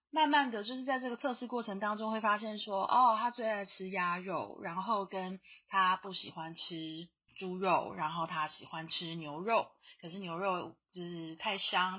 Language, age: Chinese, 20-39